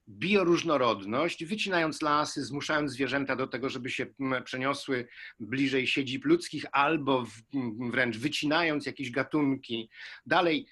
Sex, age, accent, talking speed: male, 50-69, native, 105 wpm